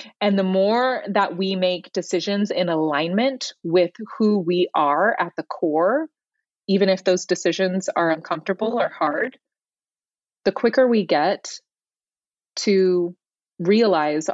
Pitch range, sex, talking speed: 185-235 Hz, female, 125 wpm